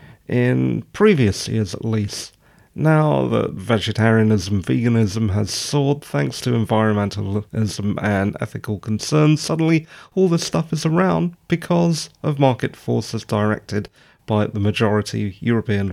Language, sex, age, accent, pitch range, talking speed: English, male, 40-59, British, 110-150 Hz, 120 wpm